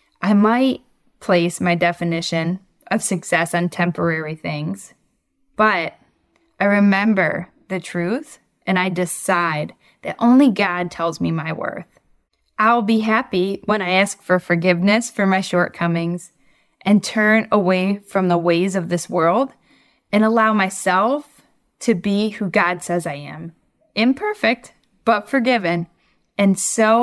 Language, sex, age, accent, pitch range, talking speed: English, female, 10-29, American, 175-215 Hz, 135 wpm